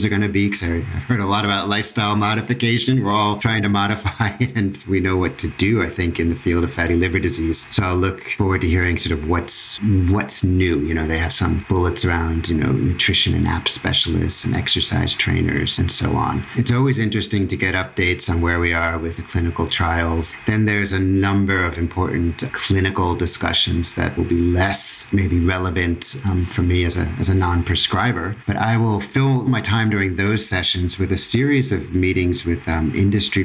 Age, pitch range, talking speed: 40-59, 85-100 Hz, 205 wpm